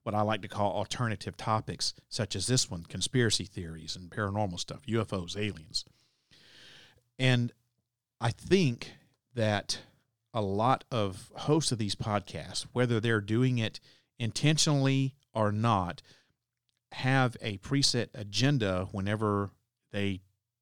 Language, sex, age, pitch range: English, male, 50-69, 100-125 Hz